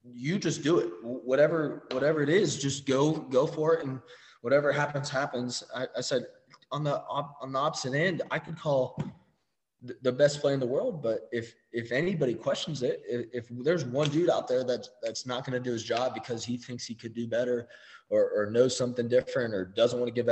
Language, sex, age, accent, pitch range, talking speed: English, male, 20-39, American, 120-150 Hz, 220 wpm